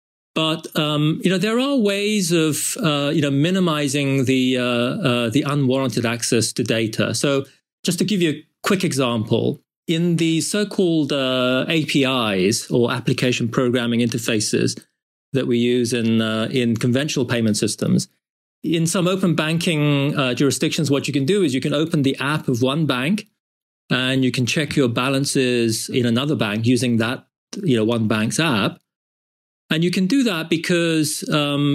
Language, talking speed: English, 165 wpm